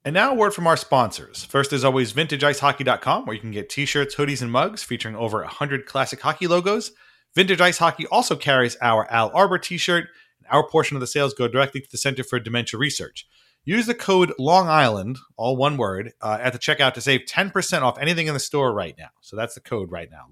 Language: English